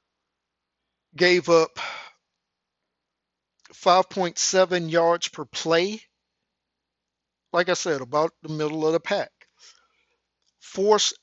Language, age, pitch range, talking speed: English, 50-69, 150-185 Hz, 85 wpm